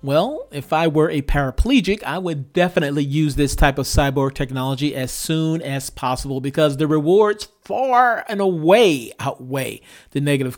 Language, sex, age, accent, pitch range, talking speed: English, male, 40-59, American, 145-185 Hz, 160 wpm